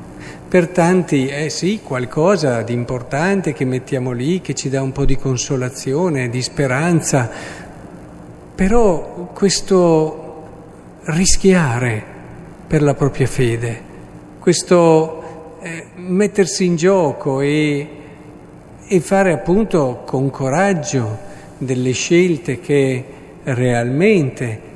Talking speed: 100 wpm